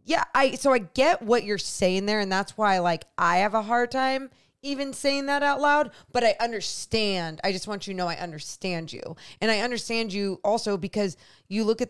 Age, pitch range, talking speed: 20-39, 180-230 Hz, 220 wpm